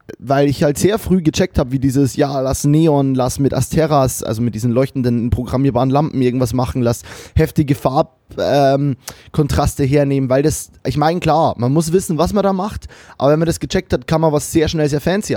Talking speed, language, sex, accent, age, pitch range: 205 wpm, German, male, German, 20-39, 130-165 Hz